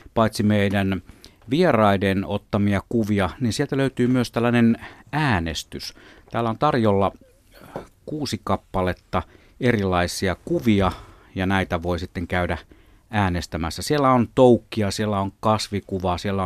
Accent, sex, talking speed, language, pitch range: native, male, 115 wpm, Finnish, 90-115 Hz